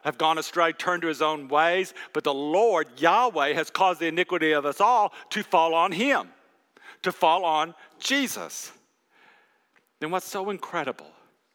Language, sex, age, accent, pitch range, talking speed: English, male, 50-69, American, 175-275 Hz, 160 wpm